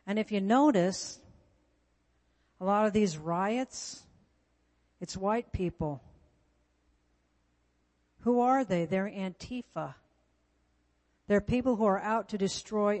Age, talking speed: 60-79, 110 wpm